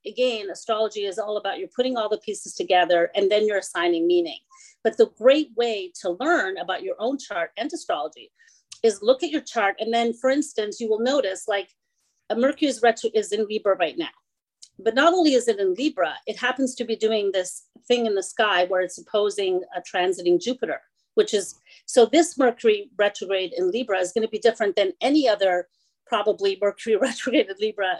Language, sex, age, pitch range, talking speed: English, female, 40-59, 195-265 Hz, 195 wpm